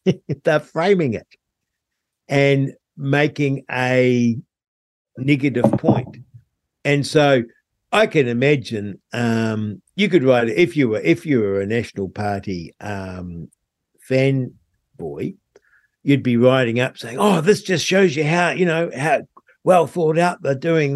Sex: male